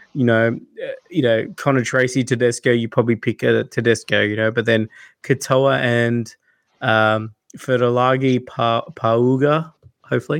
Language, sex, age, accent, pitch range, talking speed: English, male, 20-39, Australian, 115-145 Hz, 125 wpm